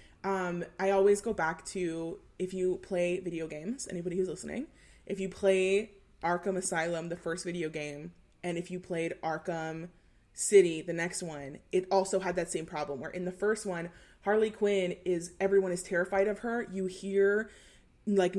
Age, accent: 20-39, American